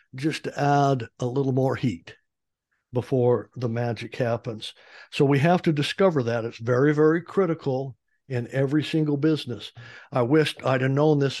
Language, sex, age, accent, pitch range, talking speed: English, male, 60-79, American, 120-150 Hz, 165 wpm